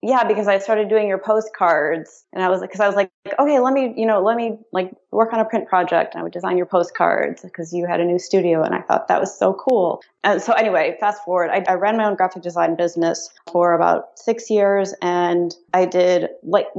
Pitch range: 170-215 Hz